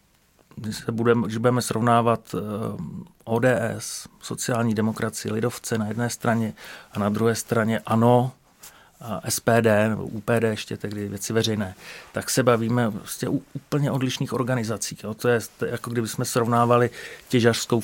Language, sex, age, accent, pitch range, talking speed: Czech, male, 40-59, native, 110-125 Hz, 140 wpm